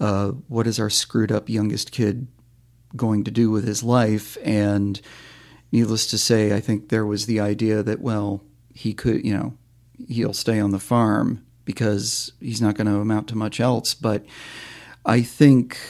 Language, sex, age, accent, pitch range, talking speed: English, male, 40-59, American, 105-120 Hz, 175 wpm